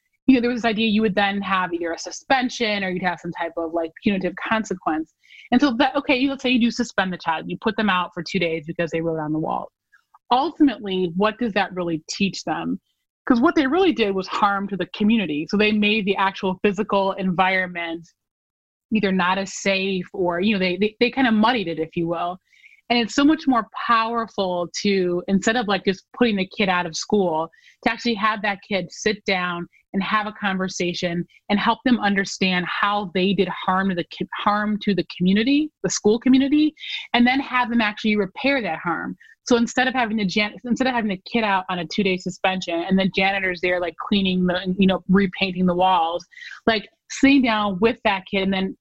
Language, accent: English, American